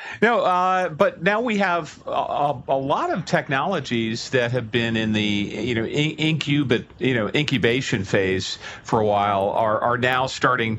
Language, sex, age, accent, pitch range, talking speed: English, male, 40-59, American, 105-125 Hz, 170 wpm